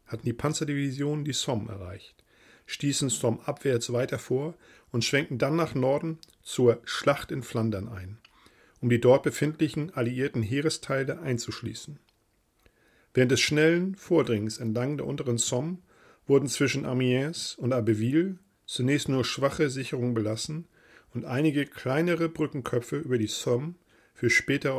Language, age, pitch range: German, 40-59, 120-155 Hz